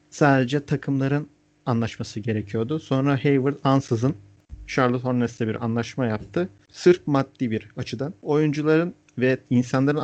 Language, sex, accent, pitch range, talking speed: Turkish, male, native, 115-150 Hz, 115 wpm